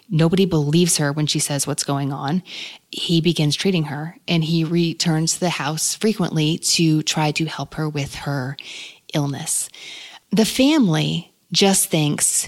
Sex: female